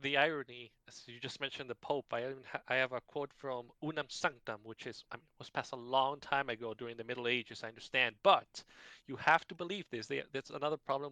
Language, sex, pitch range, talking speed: English, male, 115-145 Hz, 235 wpm